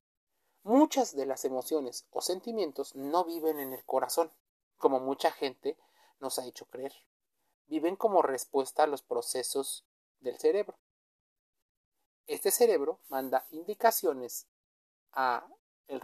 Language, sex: Spanish, male